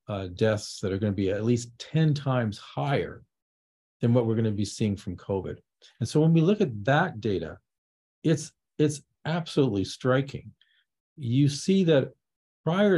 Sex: male